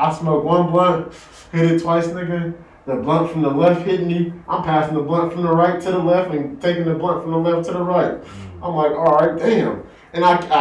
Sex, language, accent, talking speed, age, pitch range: male, English, American, 240 wpm, 20-39, 140-175 Hz